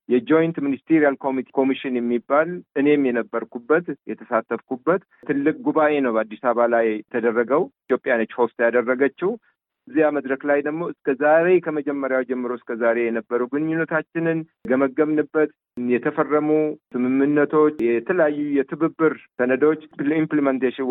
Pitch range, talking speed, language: 125-150 Hz, 100 wpm, Amharic